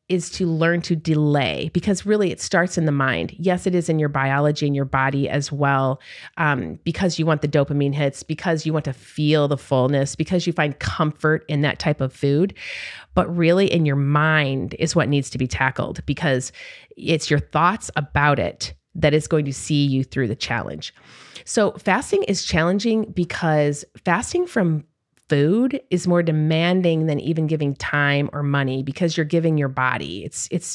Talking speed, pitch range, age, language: 185 wpm, 145-175 Hz, 30-49, English